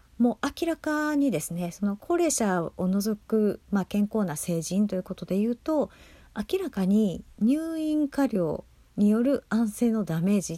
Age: 40-59